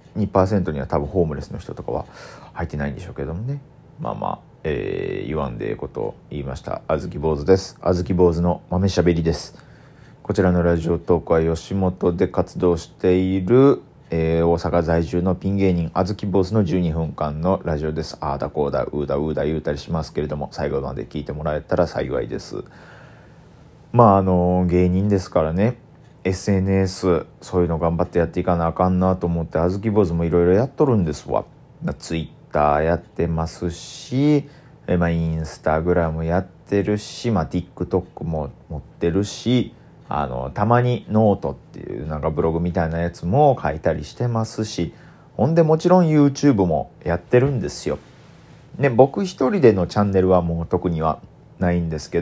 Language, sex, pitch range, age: Japanese, male, 85-110 Hz, 40-59